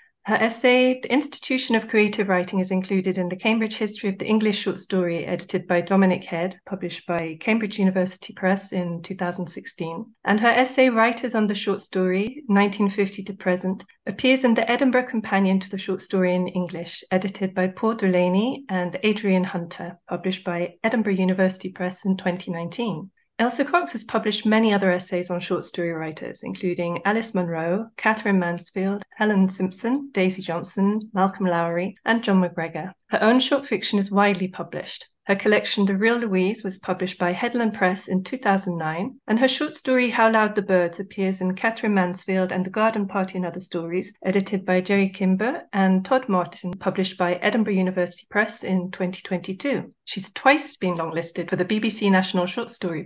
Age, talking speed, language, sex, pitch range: 30-49, 170 wpm, English, female, 180-220 Hz